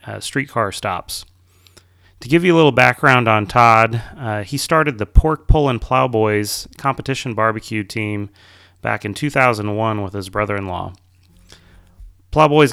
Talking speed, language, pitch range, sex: 140 wpm, English, 95-120 Hz, male